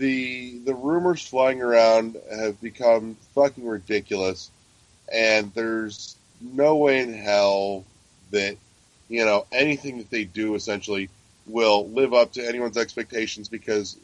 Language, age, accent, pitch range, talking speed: English, 30-49, American, 105-125 Hz, 130 wpm